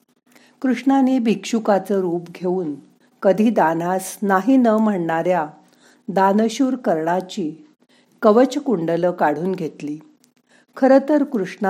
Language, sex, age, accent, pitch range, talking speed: Marathi, female, 50-69, native, 180-245 Hz, 85 wpm